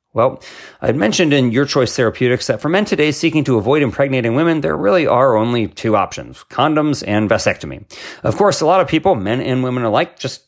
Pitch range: 100-150 Hz